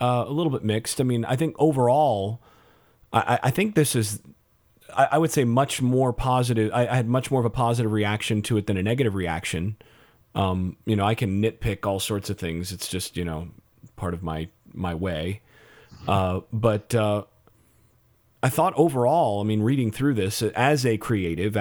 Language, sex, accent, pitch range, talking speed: English, male, American, 105-120 Hz, 195 wpm